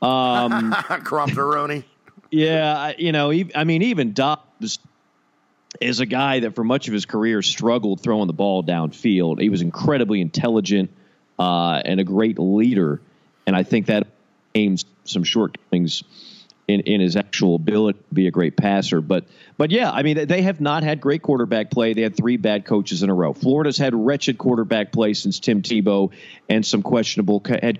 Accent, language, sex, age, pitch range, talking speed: American, English, male, 40-59, 105-145 Hz, 175 wpm